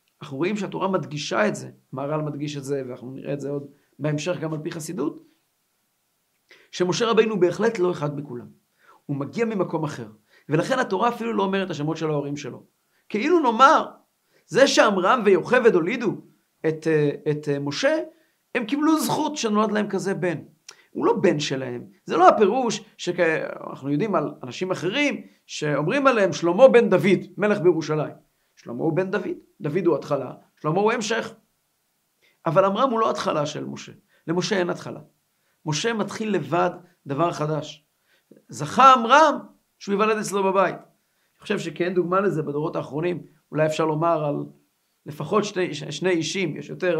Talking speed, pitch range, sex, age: 160 wpm, 150-210 Hz, male, 50-69